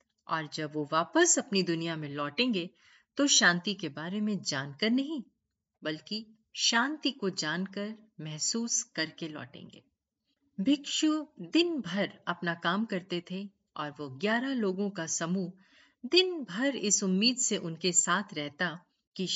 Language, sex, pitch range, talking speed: Hindi, female, 175-250 Hz, 135 wpm